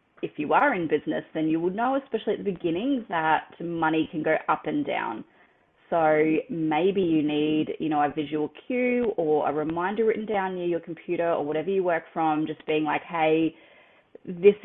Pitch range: 155-185 Hz